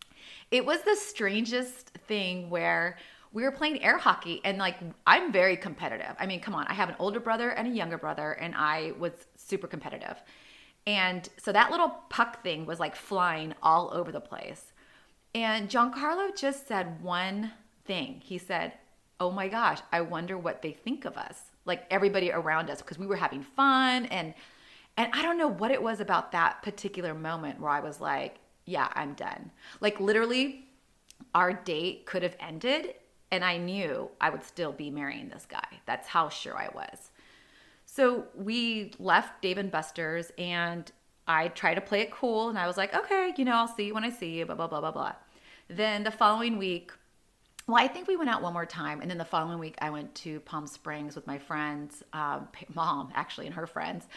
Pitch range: 170-230 Hz